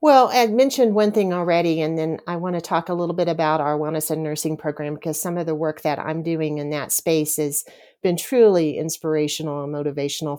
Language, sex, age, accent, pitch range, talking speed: English, female, 40-59, American, 155-180 Hz, 220 wpm